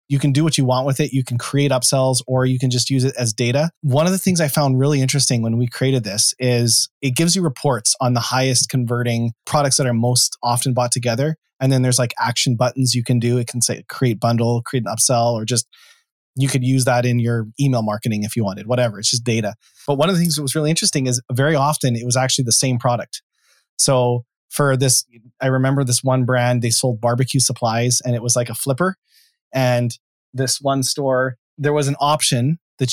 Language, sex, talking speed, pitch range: English, male, 230 wpm, 120-140 Hz